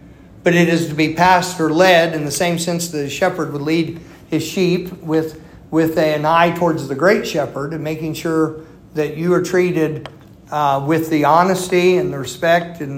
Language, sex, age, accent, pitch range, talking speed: English, male, 50-69, American, 145-170 Hz, 195 wpm